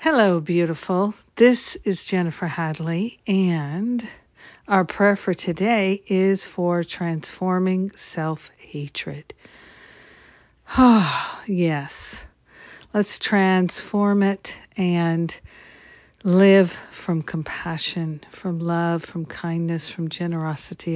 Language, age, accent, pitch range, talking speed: English, 50-69, American, 165-190 Hz, 85 wpm